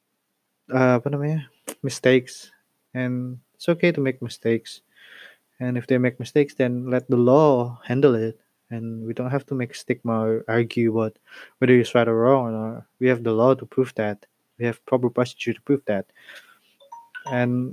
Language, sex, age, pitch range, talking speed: Indonesian, male, 20-39, 115-130 Hz, 180 wpm